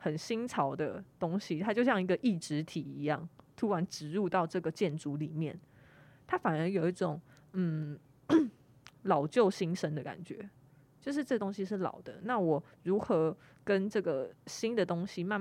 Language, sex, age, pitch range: Chinese, female, 20-39, 150-195 Hz